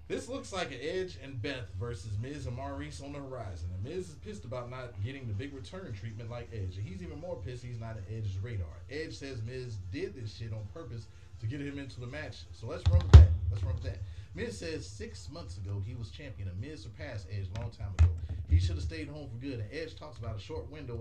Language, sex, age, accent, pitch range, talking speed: English, male, 30-49, American, 95-115 Hz, 255 wpm